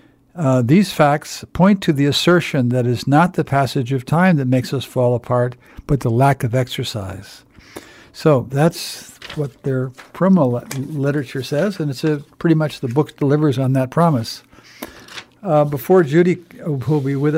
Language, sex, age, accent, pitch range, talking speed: English, male, 60-79, American, 130-155 Hz, 165 wpm